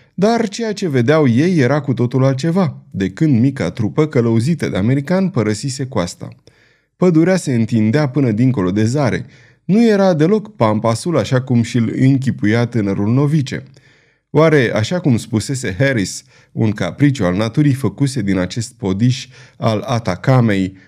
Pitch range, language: 110-155 Hz, Romanian